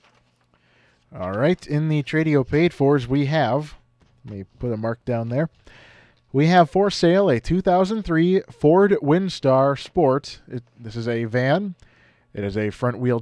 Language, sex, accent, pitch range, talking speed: English, male, American, 125-175 Hz, 155 wpm